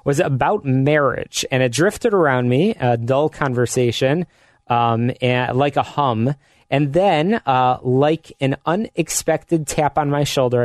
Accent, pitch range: American, 125-155 Hz